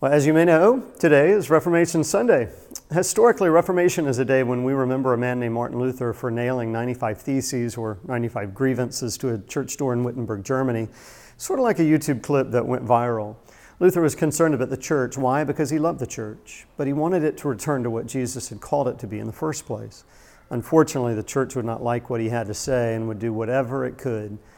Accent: American